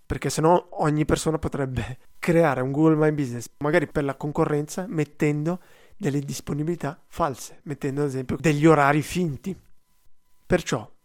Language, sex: Italian, male